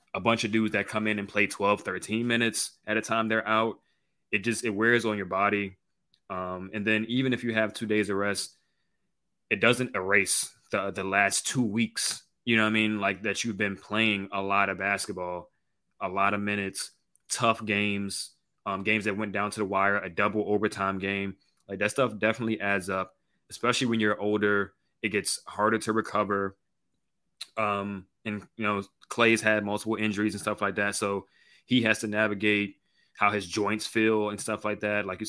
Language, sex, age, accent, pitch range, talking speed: English, male, 20-39, American, 100-110 Hz, 200 wpm